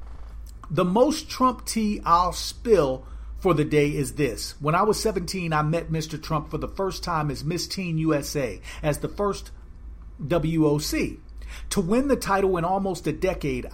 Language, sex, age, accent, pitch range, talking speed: English, male, 40-59, American, 150-195 Hz, 170 wpm